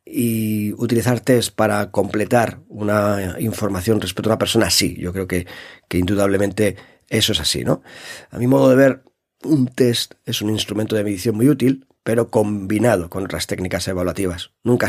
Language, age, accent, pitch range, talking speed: Spanish, 40-59, Spanish, 95-115 Hz, 170 wpm